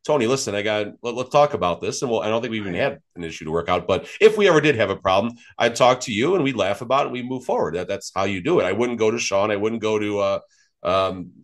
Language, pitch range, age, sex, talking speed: English, 100-125 Hz, 30-49, male, 300 wpm